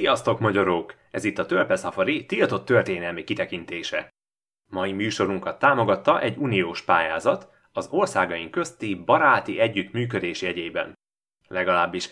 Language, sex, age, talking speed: Hungarian, male, 20-39, 110 wpm